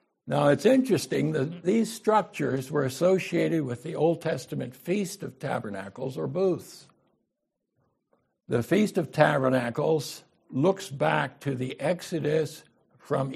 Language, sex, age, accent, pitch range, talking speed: English, male, 60-79, American, 130-175 Hz, 120 wpm